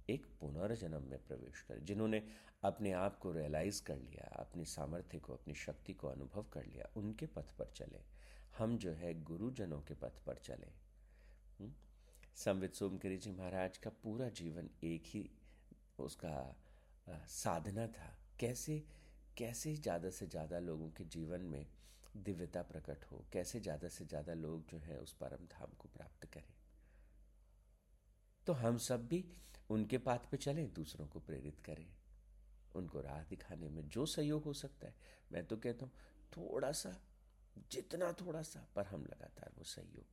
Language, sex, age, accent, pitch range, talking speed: Hindi, male, 50-69, native, 75-110 Hz, 135 wpm